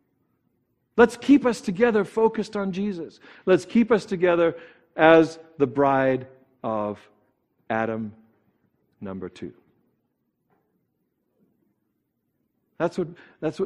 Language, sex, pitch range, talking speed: English, male, 130-210 Hz, 85 wpm